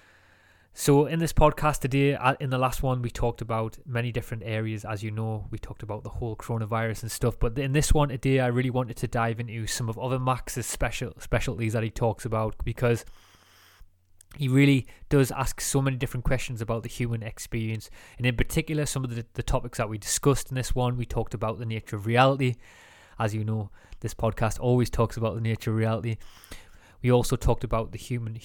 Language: English